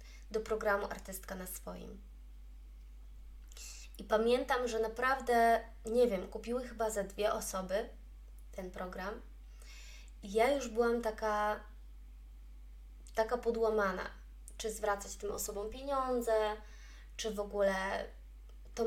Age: 20-39